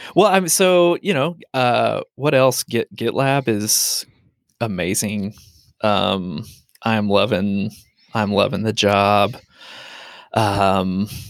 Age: 20-39